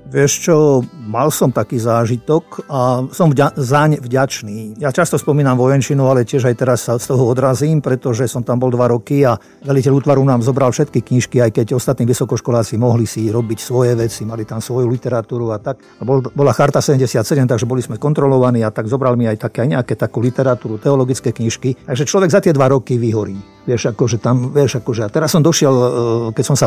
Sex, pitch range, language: male, 115-135 Hz, Slovak